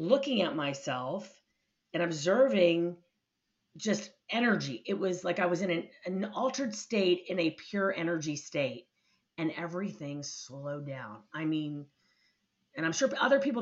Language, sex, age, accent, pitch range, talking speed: English, female, 40-59, American, 155-190 Hz, 145 wpm